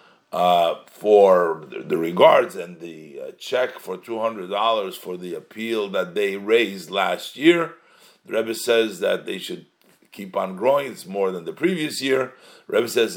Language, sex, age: English, male, 50-69